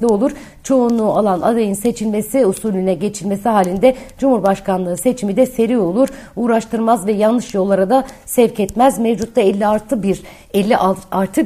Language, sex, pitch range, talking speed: Turkish, female, 200-245 Hz, 135 wpm